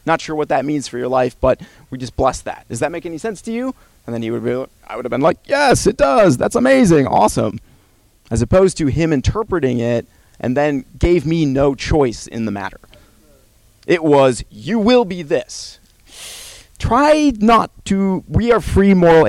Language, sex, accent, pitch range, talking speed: English, male, American, 115-155 Hz, 200 wpm